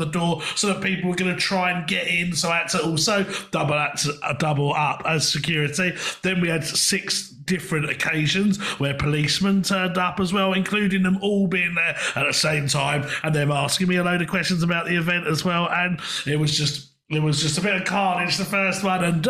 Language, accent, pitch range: English, British, 150-180 Hz